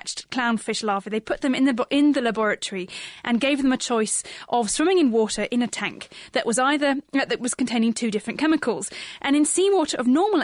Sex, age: female, 10-29